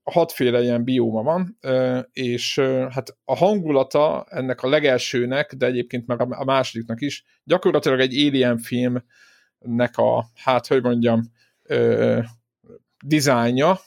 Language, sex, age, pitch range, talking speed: Hungarian, male, 50-69, 120-150 Hz, 115 wpm